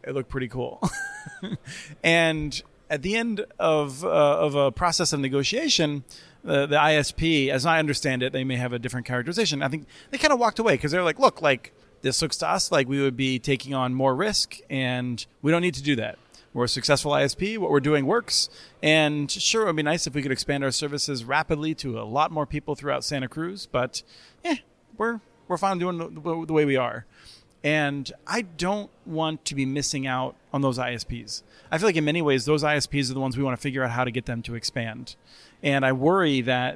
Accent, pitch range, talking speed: American, 130-155 Hz, 225 wpm